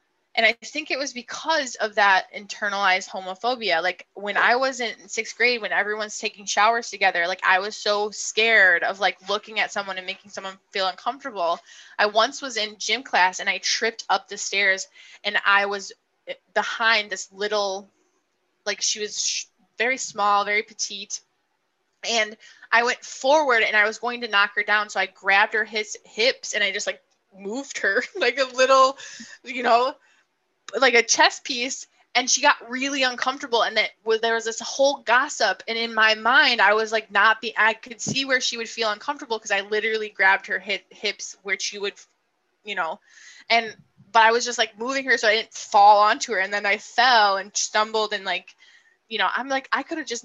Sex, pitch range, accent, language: female, 200-245 Hz, American, English